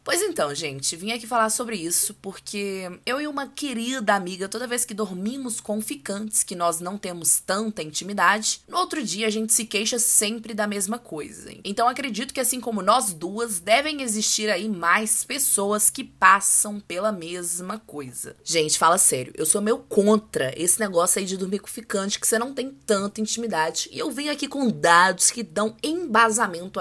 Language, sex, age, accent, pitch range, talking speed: Portuguese, female, 20-39, Brazilian, 190-265 Hz, 190 wpm